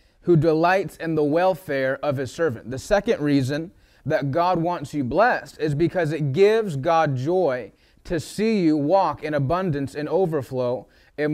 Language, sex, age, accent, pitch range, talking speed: English, male, 30-49, American, 150-185 Hz, 165 wpm